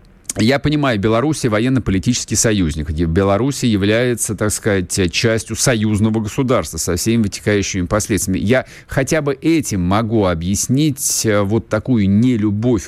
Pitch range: 105-145 Hz